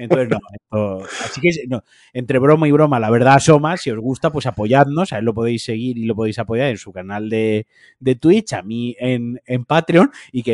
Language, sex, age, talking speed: Spanish, male, 30-49, 230 wpm